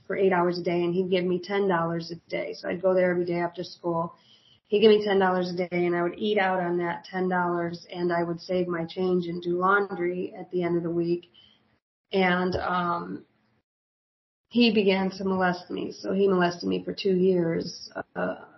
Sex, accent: female, American